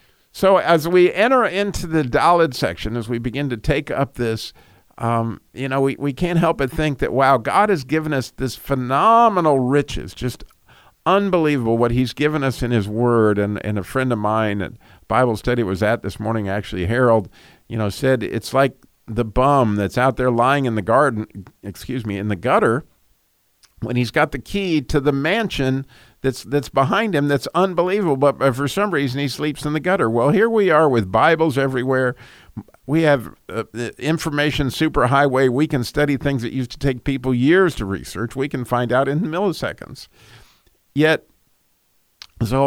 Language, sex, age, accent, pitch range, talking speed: English, male, 50-69, American, 110-145 Hz, 180 wpm